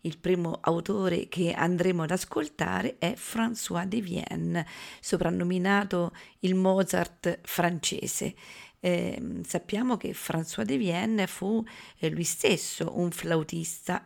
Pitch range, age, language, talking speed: 165-210 Hz, 40-59, Italian, 115 wpm